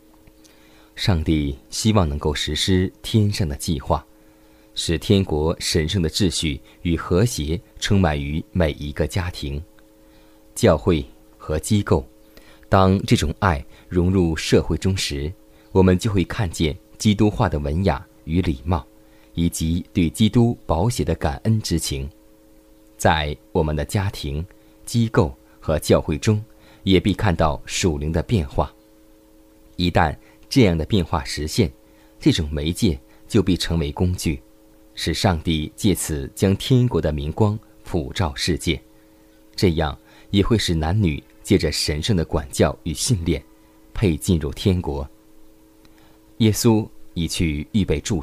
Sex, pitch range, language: male, 80-110 Hz, Chinese